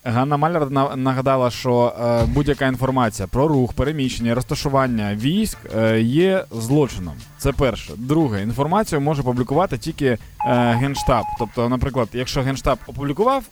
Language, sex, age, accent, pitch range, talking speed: Ukrainian, male, 20-39, native, 120-155 Hz, 130 wpm